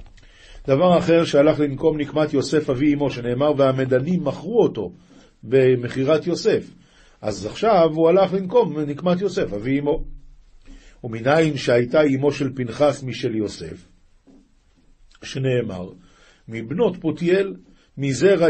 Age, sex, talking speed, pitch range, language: 50-69, male, 110 wpm, 125-155 Hz, Hebrew